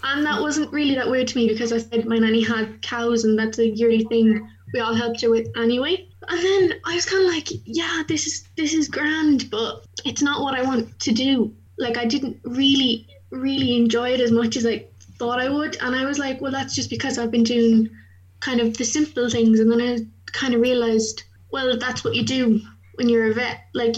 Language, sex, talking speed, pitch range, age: English, female, 235 wpm, 225-265 Hz, 20-39